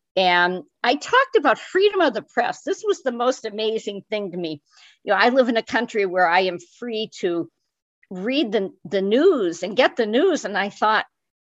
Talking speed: 205 wpm